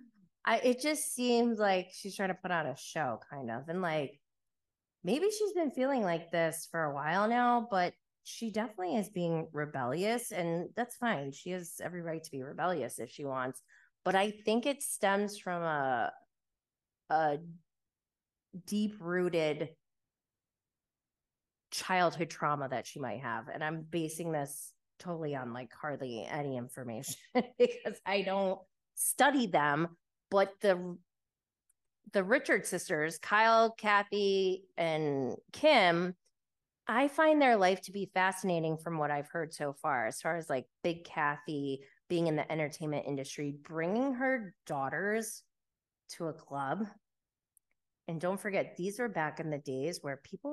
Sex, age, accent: female, 20-39, American